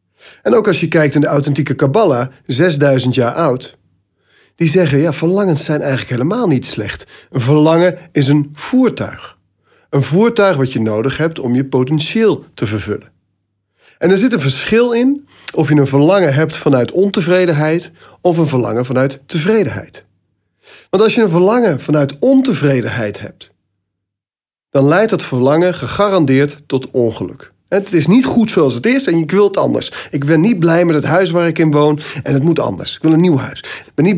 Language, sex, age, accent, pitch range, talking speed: Dutch, male, 40-59, Dutch, 125-180 Hz, 185 wpm